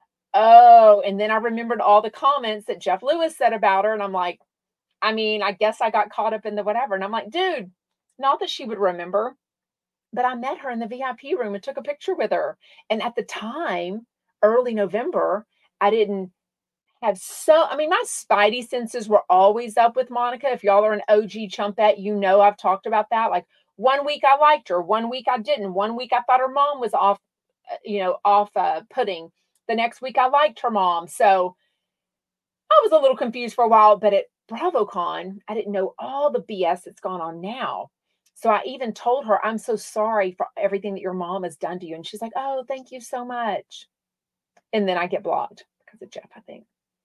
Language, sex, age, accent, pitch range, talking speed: English, female, 40-59, American, 200-260 Hz, 220 wpm